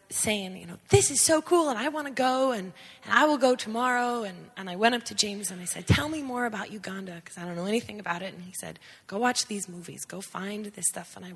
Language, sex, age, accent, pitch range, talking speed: English, female, 20-39, American, 180-220 Hz, 280 wpm